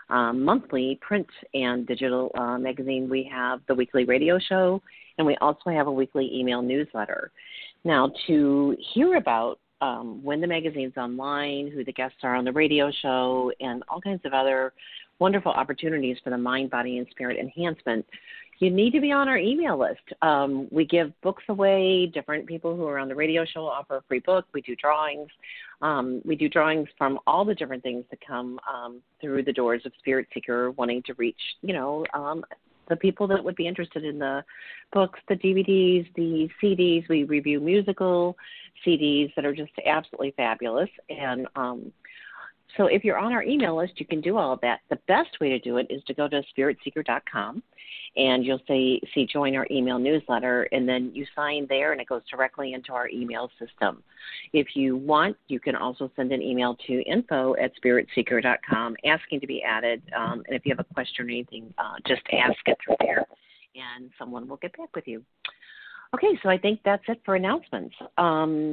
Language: English